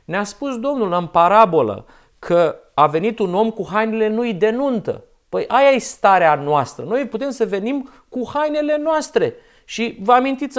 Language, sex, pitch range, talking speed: Romanian, male, 170-235 Hz, 170 wpm